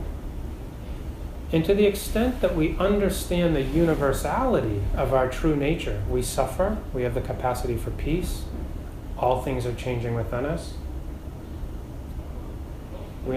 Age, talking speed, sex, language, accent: 30-49, 125 wpm, male, English, American